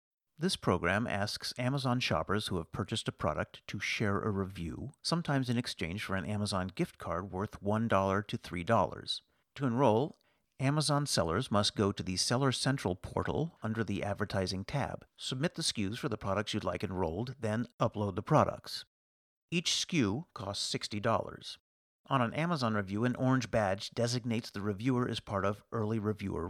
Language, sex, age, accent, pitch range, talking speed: English, male, 50-69, American, 105-135 Hz, 165 wpm